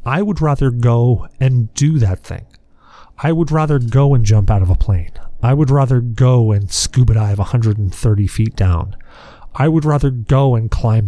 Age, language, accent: 40-59, English, American